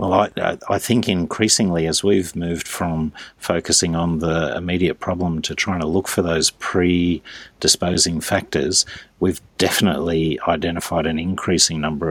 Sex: male